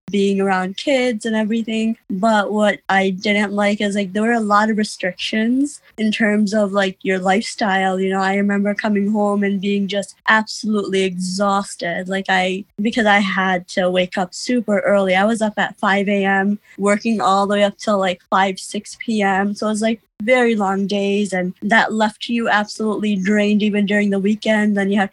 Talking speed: 190 wpm